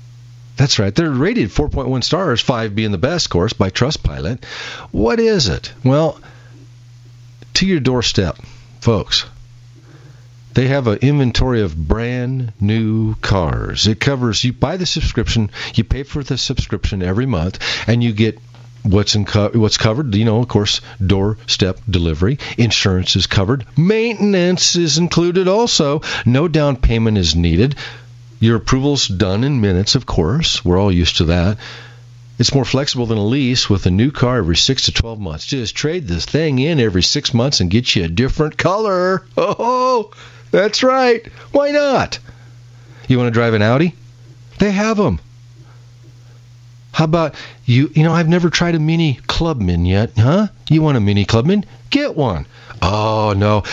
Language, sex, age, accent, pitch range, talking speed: English, male, 50-69, American, 110-140 Hz, 160 wpm